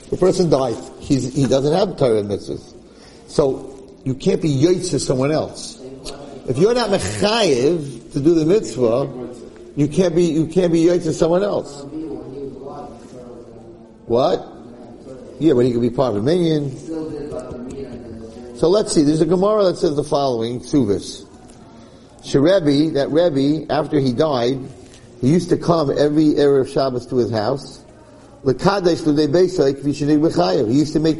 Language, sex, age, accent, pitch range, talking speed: English, male, 50-69, American, 125-165 Hz, 145 wpm